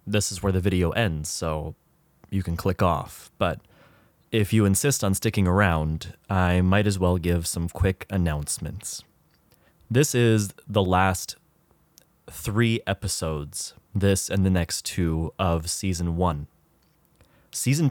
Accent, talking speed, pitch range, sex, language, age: American, 135 wpm, 90-105 Hz, male, English, 30-49